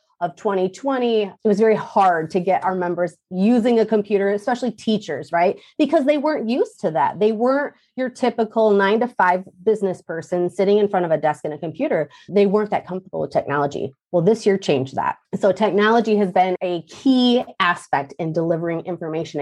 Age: 30-49